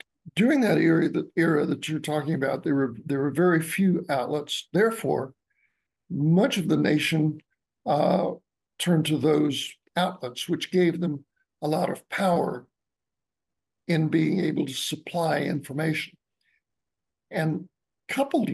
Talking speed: 125 wpm